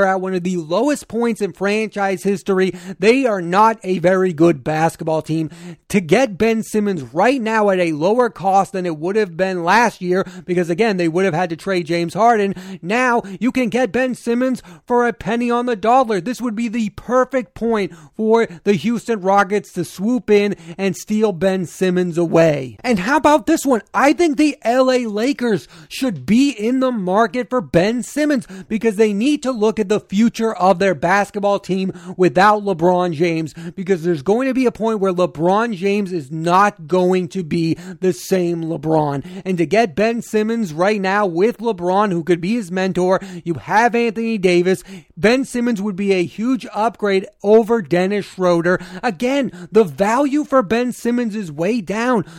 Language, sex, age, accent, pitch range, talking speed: English, male, 30-49, American, 180-230 Hz, 185 wpm